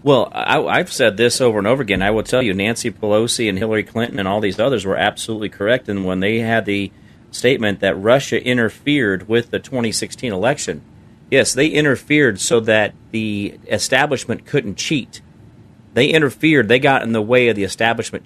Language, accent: English, American